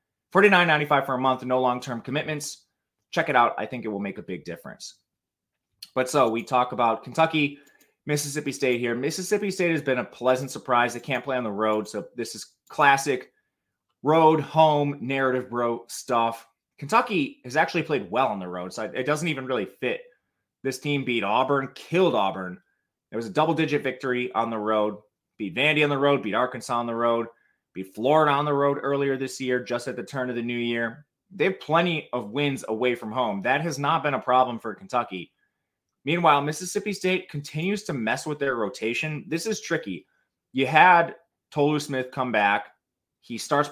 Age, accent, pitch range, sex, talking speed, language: 20-39, American, 120-150 Hz, male, 195 wpm, English